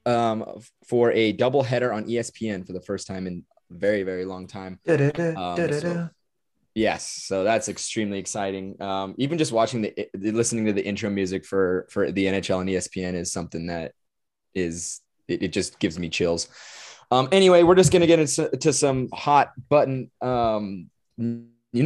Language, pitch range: English, 95-125 Hz